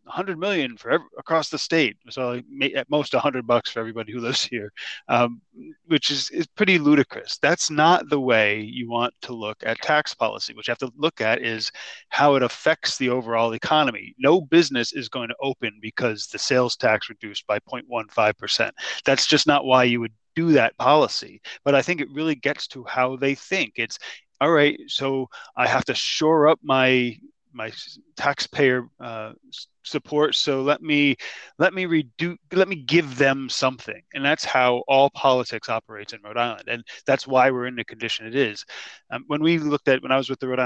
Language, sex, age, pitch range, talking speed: English, male, 30-49, 115-145 Hz, 195 wpm